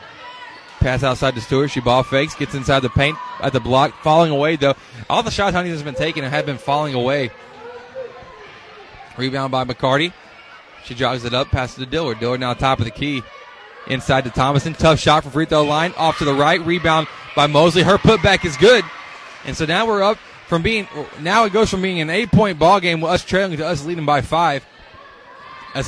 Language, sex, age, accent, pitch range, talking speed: English, male, 20-39, American, 140-175 Hz, 210 wpm